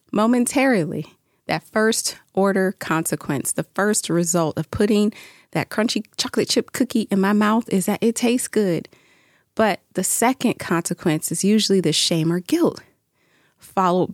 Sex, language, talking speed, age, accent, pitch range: female, English, 145 wpm, 30-49, American, 165-210 Hz